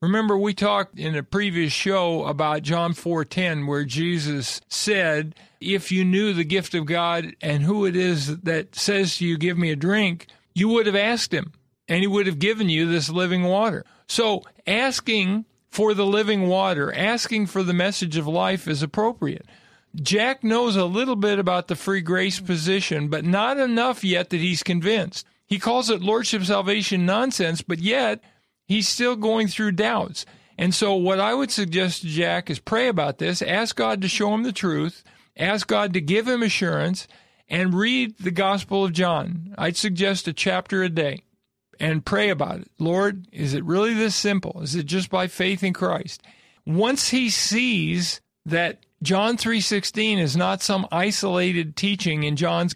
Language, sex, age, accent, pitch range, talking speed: English, male, 50-69, American, 170-205 Hz, 180 wpm